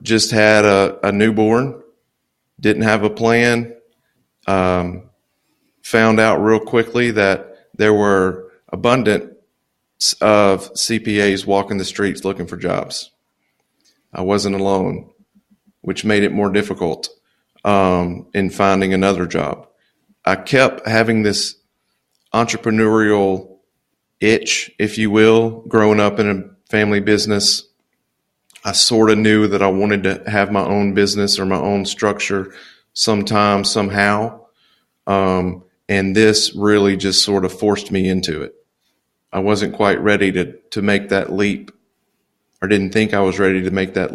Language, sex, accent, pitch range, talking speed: English, male, American, 95-110 Hz, 135 wpm